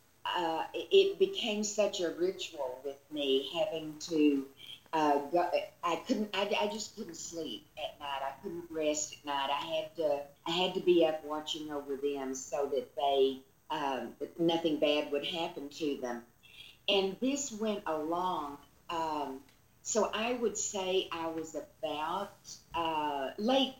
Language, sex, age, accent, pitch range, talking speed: English, female, 50-69, American, 145-190 Hz, 155 wpm